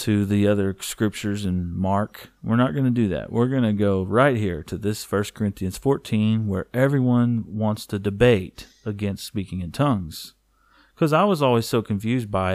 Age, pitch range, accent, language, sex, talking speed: 40-59, 110-140 Hz, American, English, male, 185 wpm